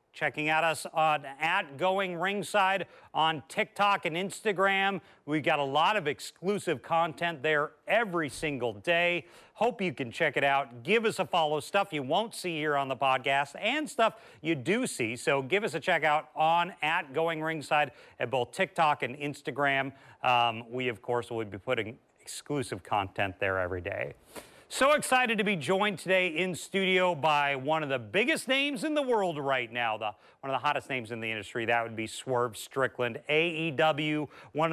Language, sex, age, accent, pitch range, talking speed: English, male, 40-59, American, 125-175 Hz, 185 wpm